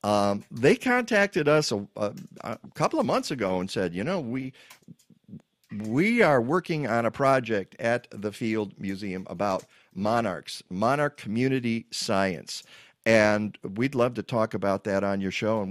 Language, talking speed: English, 160 wpm